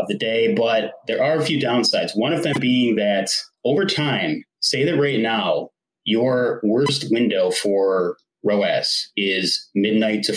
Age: 30-49